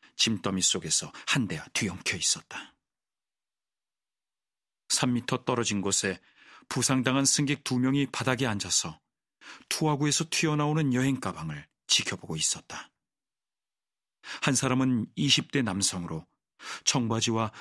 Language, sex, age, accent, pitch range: Korean, male, 40-59, native, 110-140 Hz